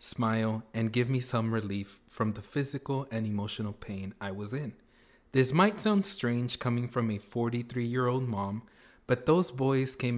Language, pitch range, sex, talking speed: English, 110-130 Hz, male, 175 wpm